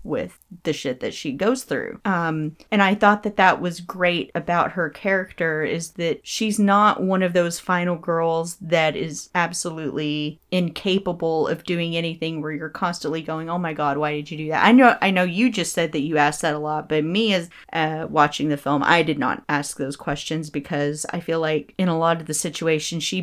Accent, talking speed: American, 215 wpm